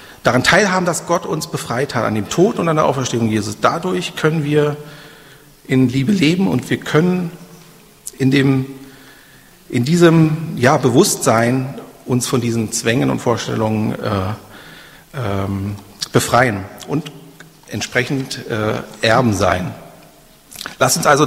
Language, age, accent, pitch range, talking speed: German, 40-59, German, 115-155 Hz, 125 wpm